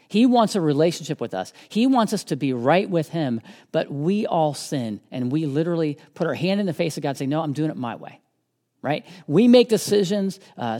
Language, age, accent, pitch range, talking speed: English, 40-59, American, 160-230 Hz, 235 wpm